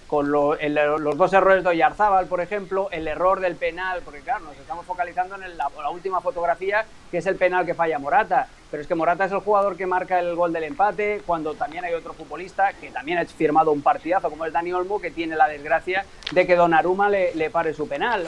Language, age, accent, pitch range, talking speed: Spanish, 30-49, Spanish, 170-210 Hz, 235 wpm